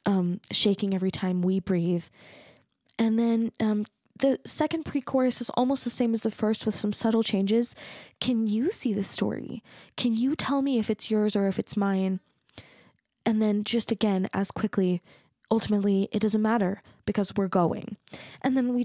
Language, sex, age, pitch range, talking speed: English, female, 10-29, 195-225 Hz, 175 wpm